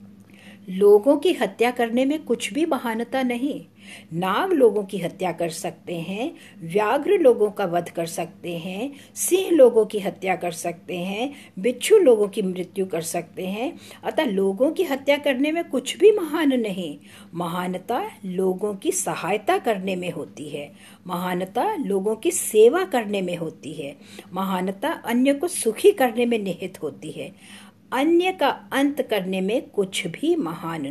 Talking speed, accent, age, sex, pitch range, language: 155 wpm, Indian, 50-69, female, 185-265 Hz, English